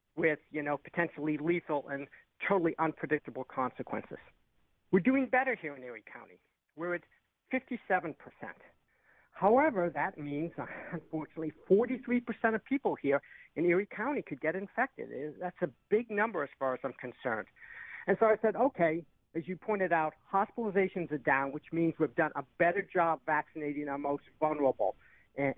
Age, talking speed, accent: 50-69, 155 wpm, American